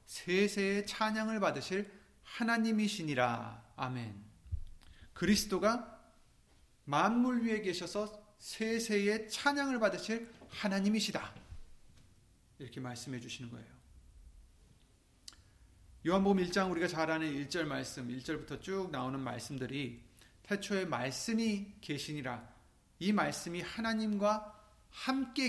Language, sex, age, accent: Korean, male, 40-59, native